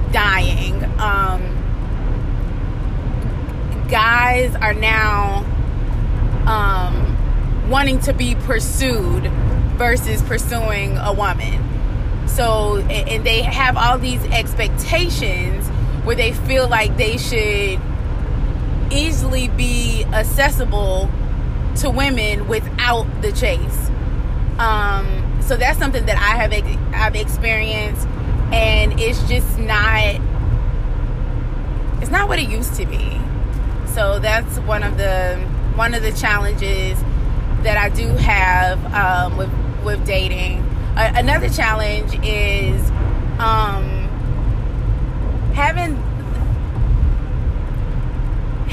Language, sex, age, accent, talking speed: English, female, 20-39, American, 95 wpm